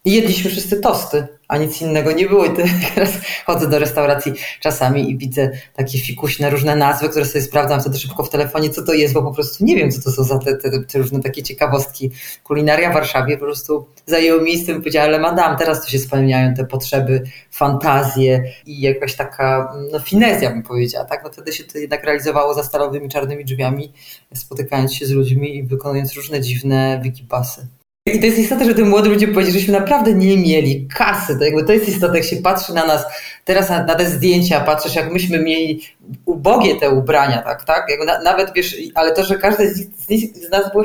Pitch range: 140-180 Hz